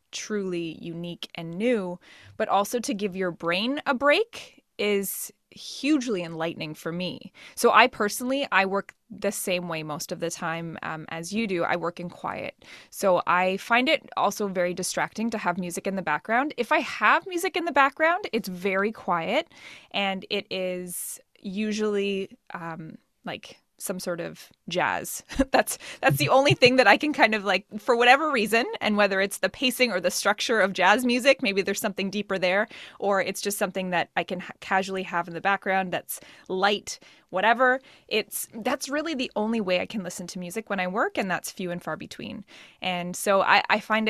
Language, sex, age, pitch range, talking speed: English, female, 20-39, 180-230 Hz, 190 wpm